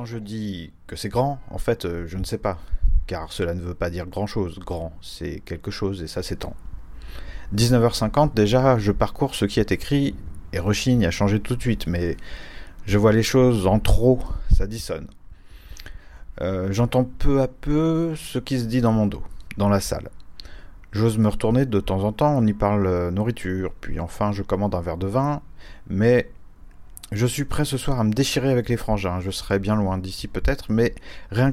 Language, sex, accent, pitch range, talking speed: French, male, French, 90-120 Hz, 200 wpm